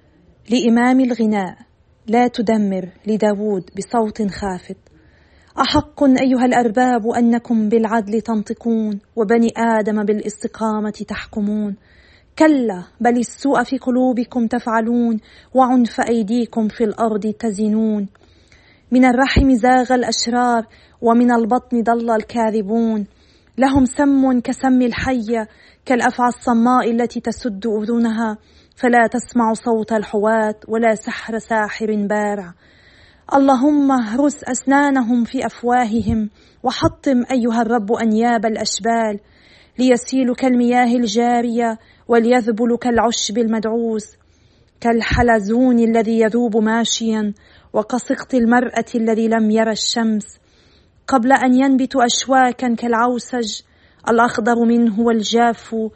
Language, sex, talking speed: Arabic, female, 95 wpm